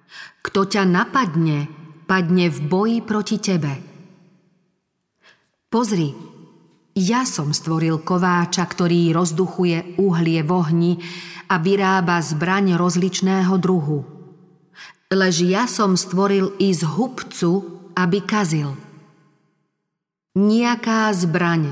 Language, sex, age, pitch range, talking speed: Slovak, female, 40-59, 165-195 Hz, 90 wpm